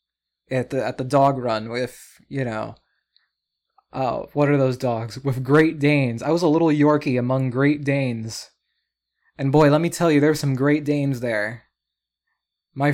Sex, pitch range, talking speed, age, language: male, 125-155 Hz, 170 wpm, 20-39, English